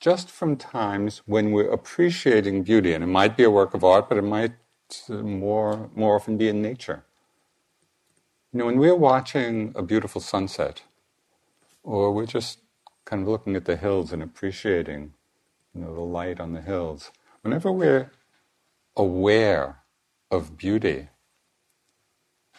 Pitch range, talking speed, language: 85-110 Hz, 145 wpm, English